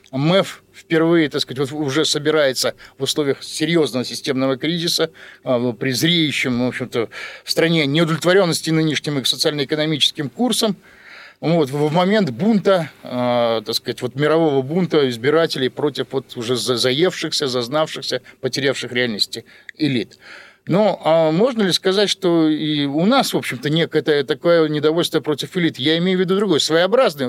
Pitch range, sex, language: 130-170 Hz, male, Russian